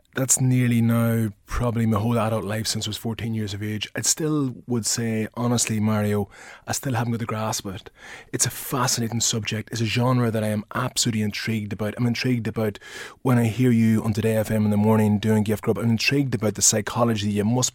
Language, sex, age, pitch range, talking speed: English, male, 20-39, 105-120 Hz, 215 wpm